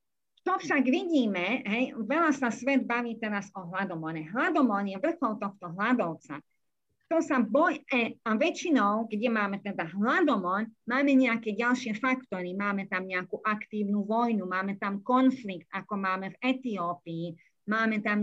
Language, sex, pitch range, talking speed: Czech, female, 190-245 Hz, 145 wpm